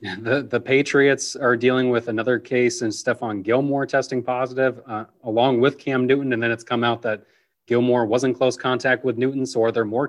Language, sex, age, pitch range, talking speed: English, male, 30-49, 115-135 Hz, 210 wpm